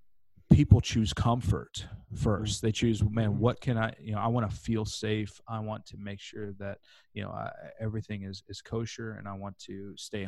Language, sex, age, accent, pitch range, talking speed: English, male, 30-49, American, 100-110 Hz, 200 wpm